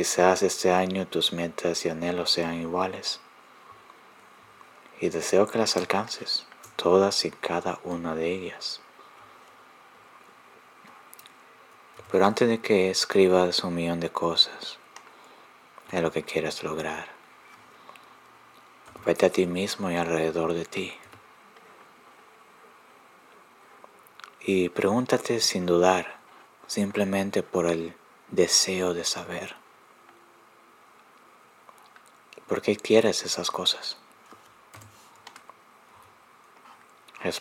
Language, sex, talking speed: Spanish, male, 95 wpm